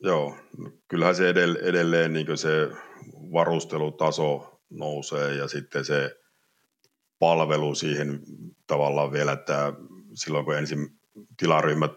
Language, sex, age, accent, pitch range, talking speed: Finnish, male, 50-69, native, 70-80 Hz, 105 wpm